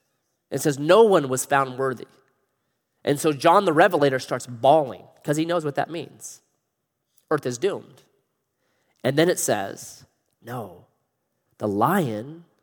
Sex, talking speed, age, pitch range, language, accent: male, 145 wpm, 30-49, 135-210 Hz, English, American